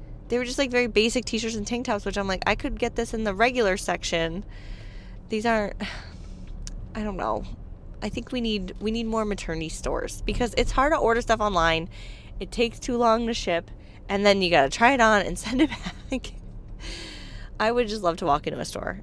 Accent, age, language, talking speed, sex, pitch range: American, 20-39, English, 220 wpm, female, 165-225 Hz